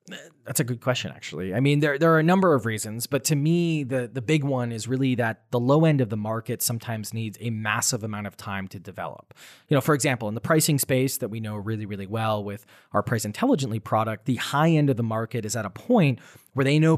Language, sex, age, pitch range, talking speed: English, male, 20-39, 110-140 Hz, 250 wpm